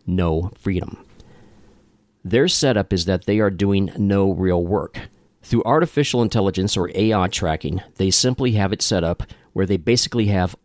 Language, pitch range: English, 90-110 Hz